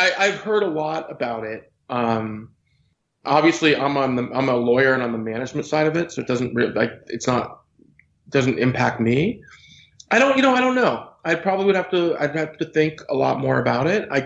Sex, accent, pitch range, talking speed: male, American, 115-145 Hz, 230 wpm